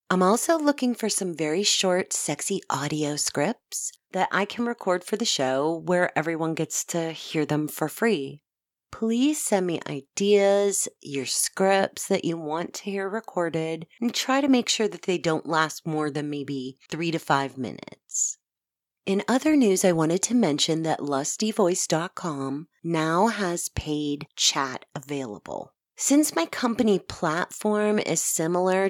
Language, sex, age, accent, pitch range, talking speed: English, female, 30-49, American, 150-205 Hz, 150 wpm